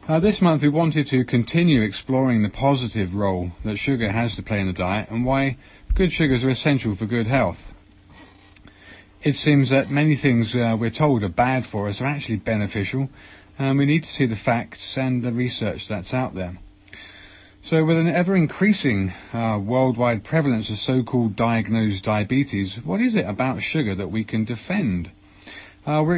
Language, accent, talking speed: English, British, 175 wpm